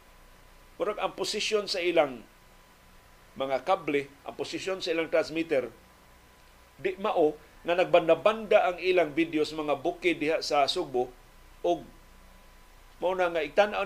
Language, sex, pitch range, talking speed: Filipino, male, 130-180 Hz, 125 wpm